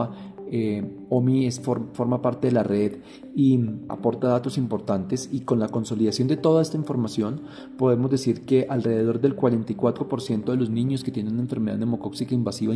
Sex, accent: male, Colombian